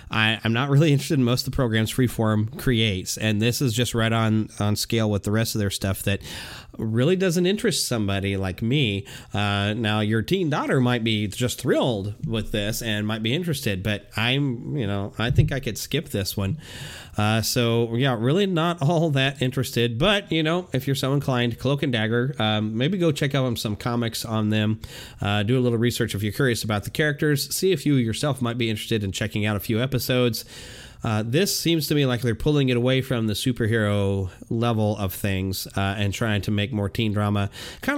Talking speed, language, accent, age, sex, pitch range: 215 wpm, English, American, 30-49, male, 110-140 Hz